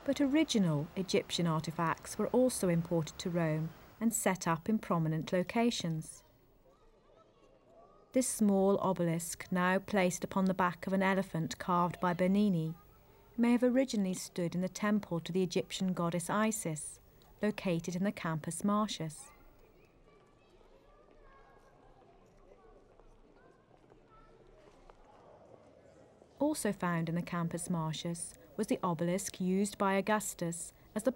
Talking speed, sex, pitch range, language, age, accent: 115 wpm, female, 170-210 Hz, English, 40-59, British